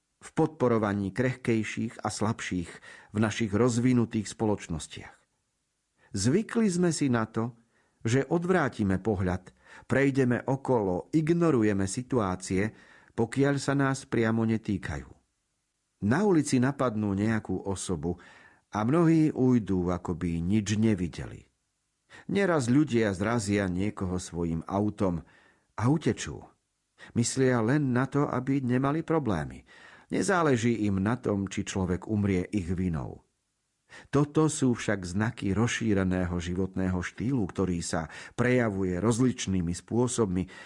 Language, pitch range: Slovak, 95-135 Hz